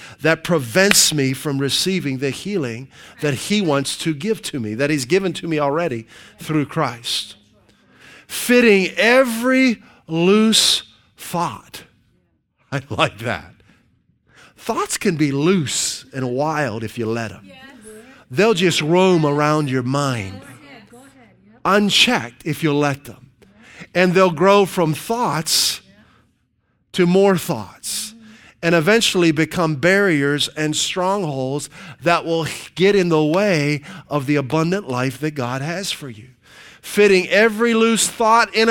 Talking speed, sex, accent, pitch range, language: 130 wpm, male, American, 140-200 Hz, English